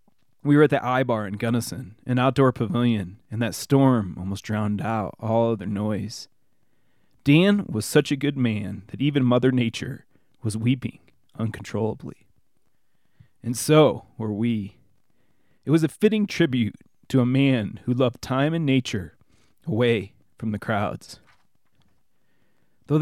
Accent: American